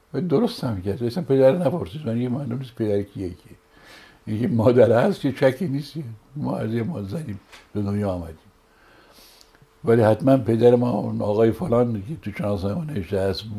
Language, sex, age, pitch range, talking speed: Persian, male, 60-79, 110-145 Hz, 145 wpm